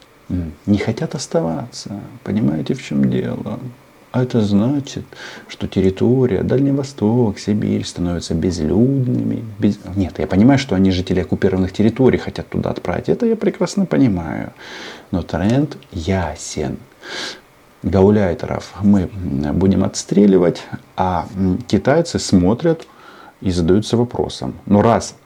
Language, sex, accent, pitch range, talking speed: Russian, male, native, 85-125 Hz, 115 wpm